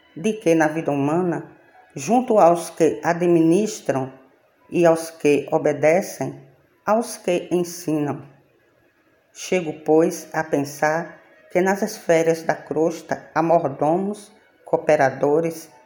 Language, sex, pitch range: Portuguese, female, 150-185 Hz